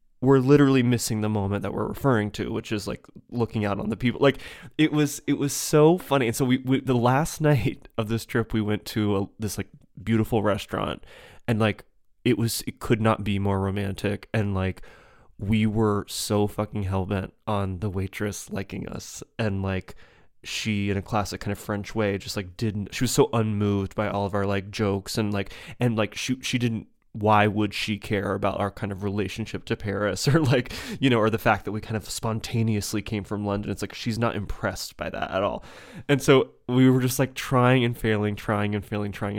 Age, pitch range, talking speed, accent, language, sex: 20-39, 100-120 Hz, 215 wpm, American, English, male